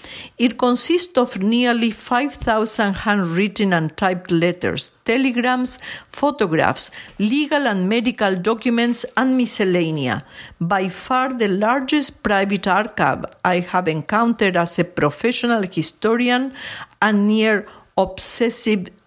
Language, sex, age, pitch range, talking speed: English, female, 50-69, 185-245 Hz, 100 wpm